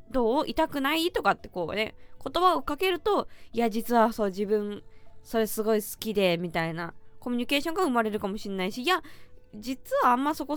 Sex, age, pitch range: female, 20-39, 200-310 Hz